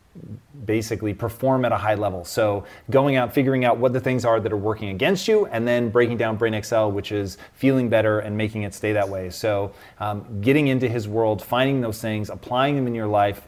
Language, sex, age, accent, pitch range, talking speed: English, male, 30-49, American, 105-125 Hz, 220 wpm